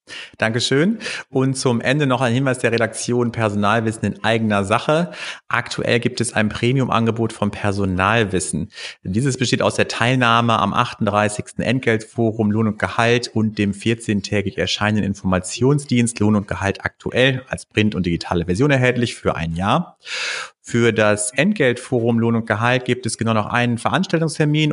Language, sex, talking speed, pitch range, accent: German, male, 150 wpm, 100-120 Hz, German